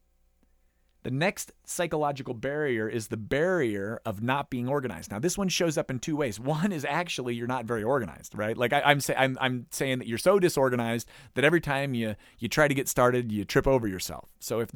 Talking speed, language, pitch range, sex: 215 wpm, English, 110-140 Hz, male